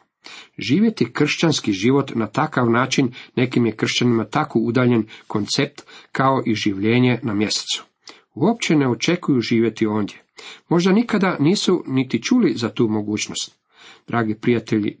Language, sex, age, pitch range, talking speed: Croatian, male, 50-69, 110-150 Hz, 130 wpm